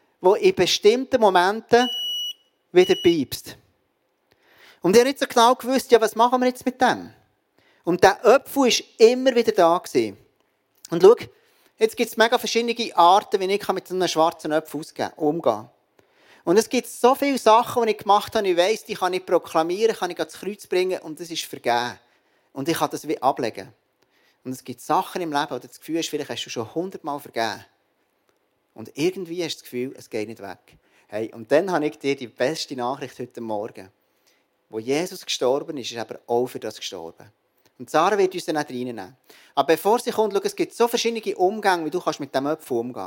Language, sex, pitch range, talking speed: German, male, 155-240 Hz, 205 wpm